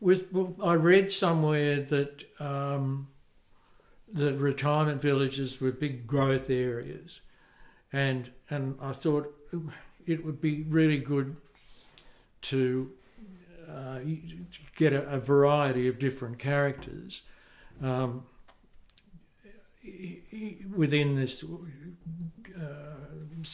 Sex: male